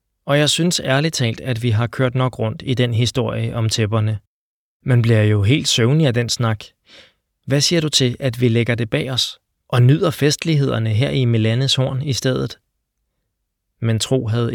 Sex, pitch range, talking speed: male, 110-125 Hz, 185 wpm